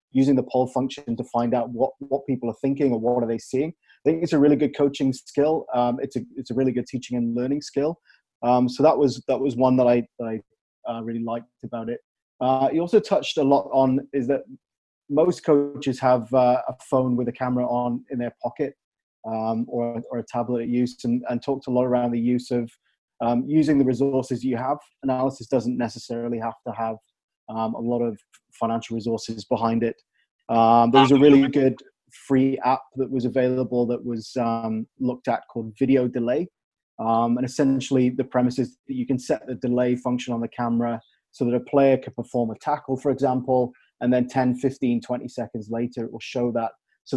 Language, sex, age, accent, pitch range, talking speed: English, male, 20-39, British, 120-135 Hz, 210 wpm